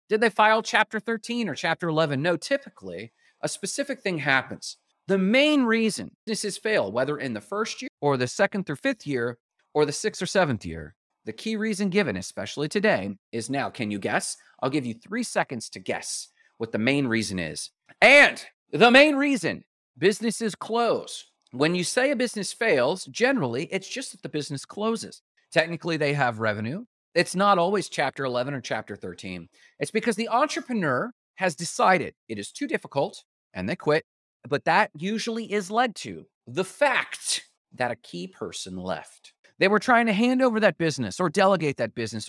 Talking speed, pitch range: 180 wpm, 135-220 Hz